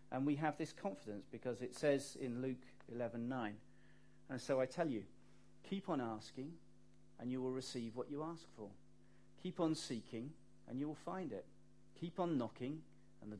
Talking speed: 180 wpm